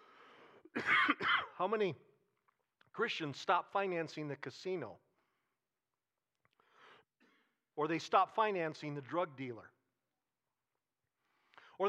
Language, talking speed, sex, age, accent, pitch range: English, 75 wpm, male, 50-69, American, 175-235 Hz